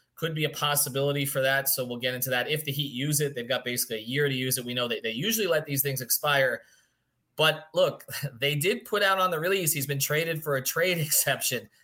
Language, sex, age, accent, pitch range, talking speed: English, male, 30-49, American, 125-155 Hz, 250 wpm